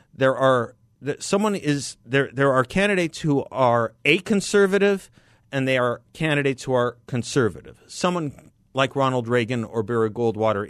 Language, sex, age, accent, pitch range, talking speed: English, male, 50-69, American, 115-155 Hz, 145 wpm